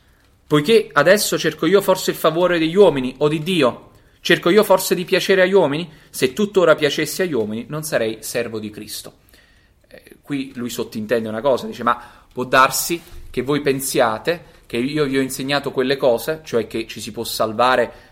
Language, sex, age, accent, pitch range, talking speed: Italian, male, 30-49, native, 110-150 Hz, 180 wpm